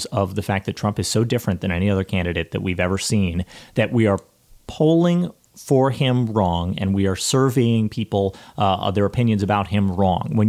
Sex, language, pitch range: male, English, 95-120 Hz